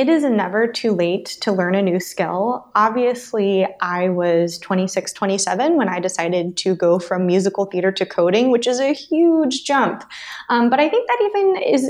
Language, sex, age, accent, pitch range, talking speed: English, female, 20-39, American, 190-240 Hz, 185 wpm